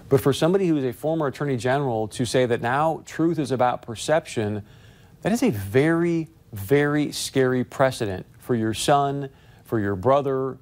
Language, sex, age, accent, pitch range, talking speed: English, male, 40-59, American, 120-150 Hz, 170 wpm